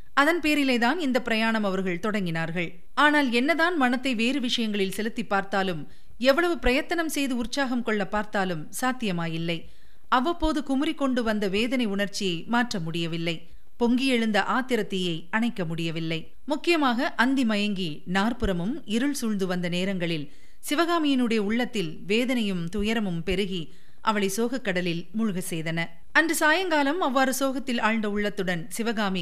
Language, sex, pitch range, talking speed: Tamil, female, 190-255 Hz, 100 wpm